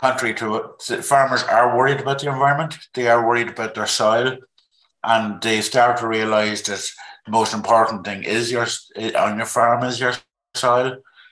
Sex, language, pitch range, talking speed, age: male, English, 105-125 Hz, 175 wpm, 60-79